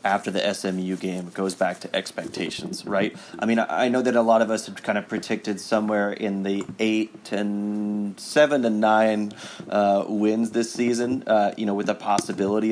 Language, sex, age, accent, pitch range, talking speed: English, male, 30-49, American, 95-110 Hz, 195 wpm